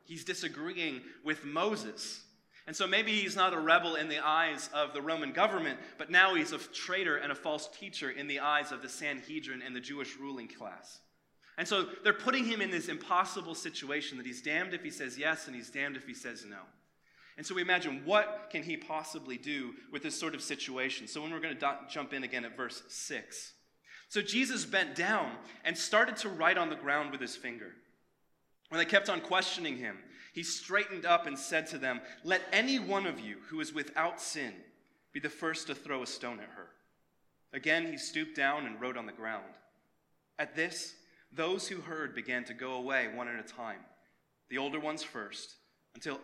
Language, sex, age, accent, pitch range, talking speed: English, male, 20-39, American, 135-185 Hz, 205 wpm